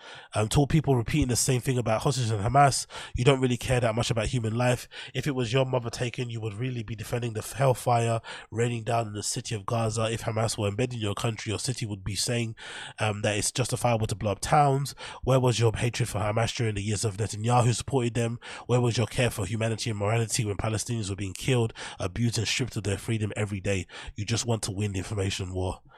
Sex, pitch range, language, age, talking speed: male, 105-125 Hz, English, 20-39, 235 wpm